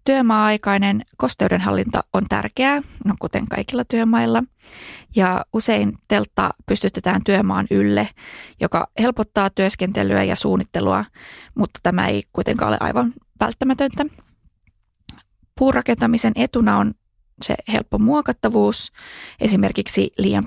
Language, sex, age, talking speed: Finnish, female, 20-39, 100 wpm